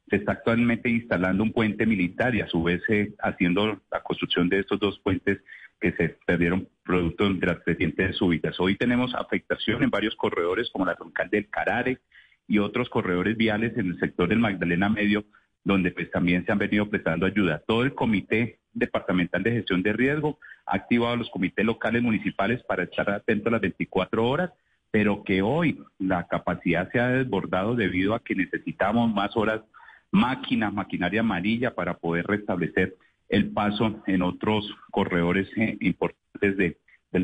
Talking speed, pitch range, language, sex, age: 165 wpm, 90-115 Hz, Spanish, male, 40-59